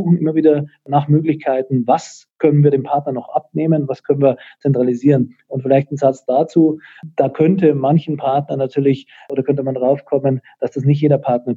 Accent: German